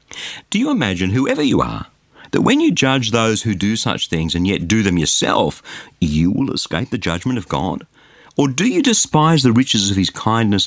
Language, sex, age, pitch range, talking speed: English, male, 50-69, 90-140 Hz, 200 wpm